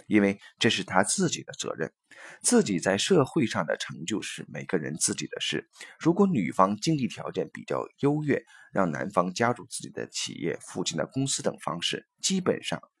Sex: male